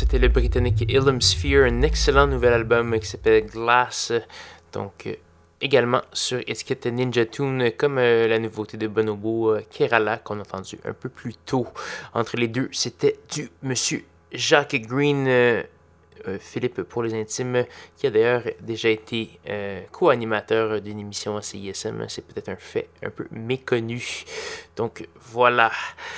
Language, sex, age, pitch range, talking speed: French, male, 20-39, 110-135 Hz, 155 wpm